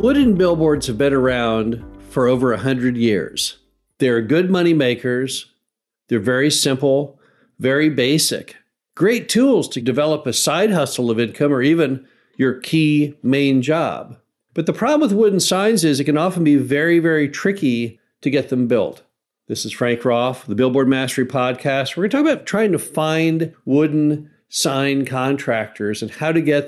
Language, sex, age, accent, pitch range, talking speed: English, male, 50-69, American, 125-155 Hz, 165 wpm